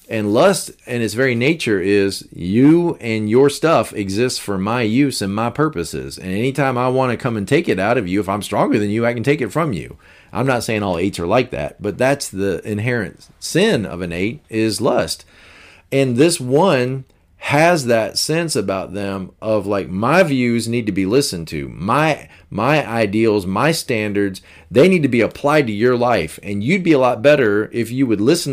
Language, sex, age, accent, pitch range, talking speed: English, male, 40-59, American, 95-130 Hz, 210 wpm